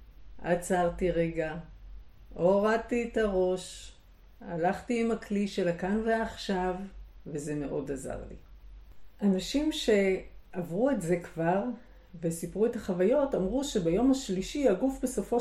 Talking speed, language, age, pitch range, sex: 110 wpm, Hebrew, 50-69, 175-235 Hz, female